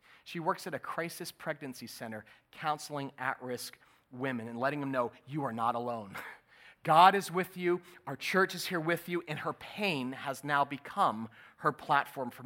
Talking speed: 180 wpm